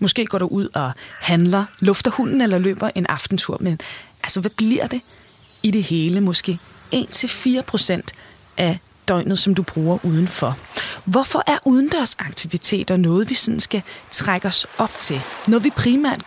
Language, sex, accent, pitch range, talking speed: Danish, female, native, 180-230 Hz, 150 wpm